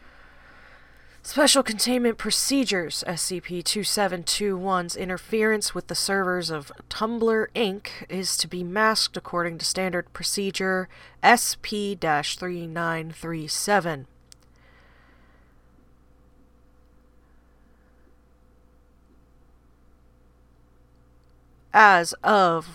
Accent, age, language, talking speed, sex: American, 30-49, English, 60 wpm, female